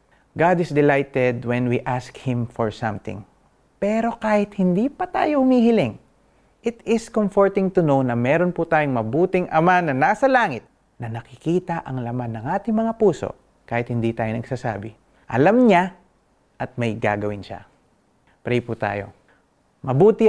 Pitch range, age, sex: 115-180 Hz, 30-49, male